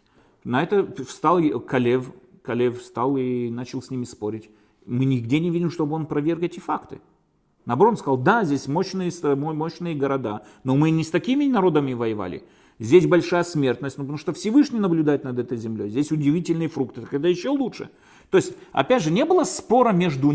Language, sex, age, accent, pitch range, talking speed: Russian, male, 40-59, native, 125-180 Hz, 175 wpm